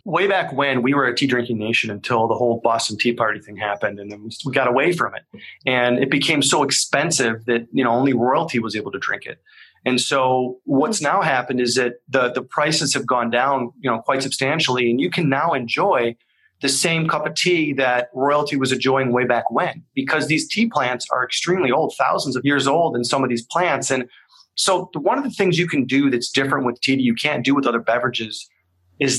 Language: English